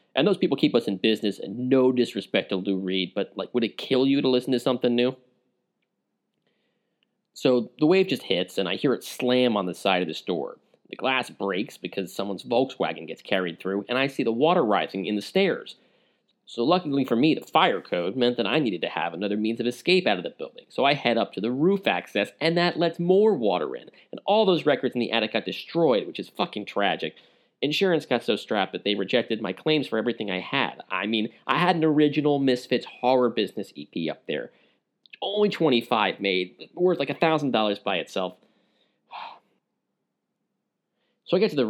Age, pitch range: 30-49, 105-160 Hz